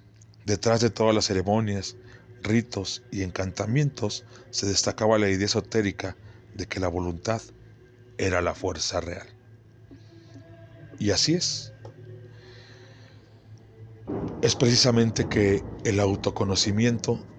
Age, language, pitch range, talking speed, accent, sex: 40-59, Spanish, 100-115 Hz, 100 wpm, Mexican, male